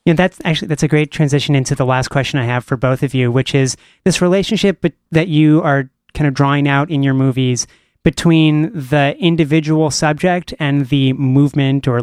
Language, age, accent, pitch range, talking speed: English, 30-49, American, 130-160 Hz, 195 wpm